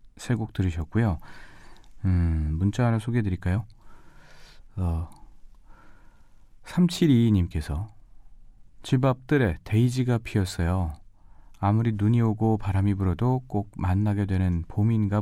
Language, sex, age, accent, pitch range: Korean, male, 40-59, native, 90-120 Hz